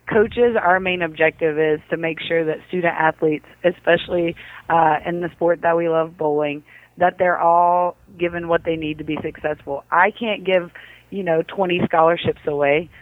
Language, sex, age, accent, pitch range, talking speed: English, female, 30-49, American, 165-185 Hz, 175 wpm